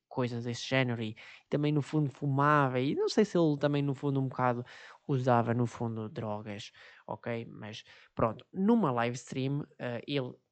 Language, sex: Portuguese, male